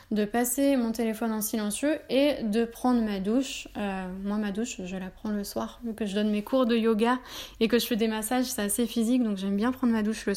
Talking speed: 255 wpm